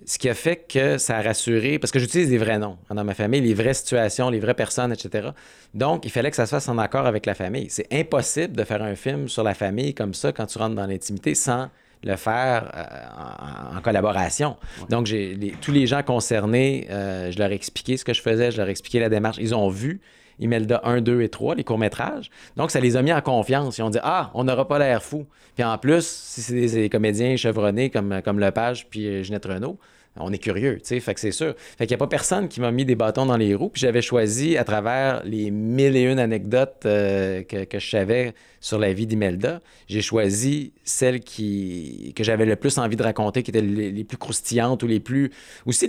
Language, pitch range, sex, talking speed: French, 105-130 Hz, male, 240 wpm